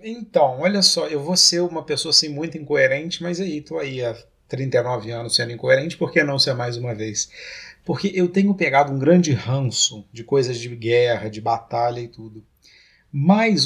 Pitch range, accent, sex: 120-165 Hz, Brazilian, male